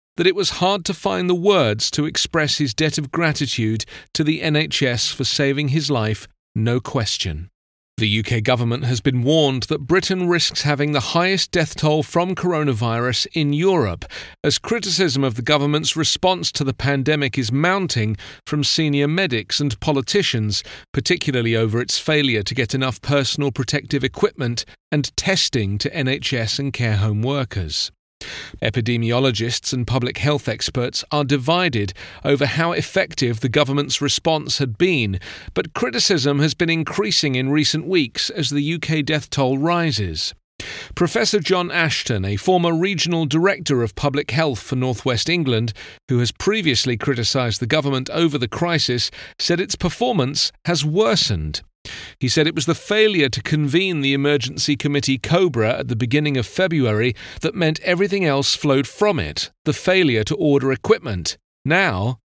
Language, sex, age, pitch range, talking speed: English, male, 40-59, 125-160 Hz, 155 wpm